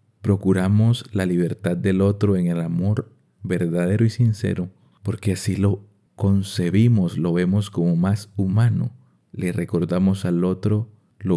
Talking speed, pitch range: 135 wpm, 90-115 Hz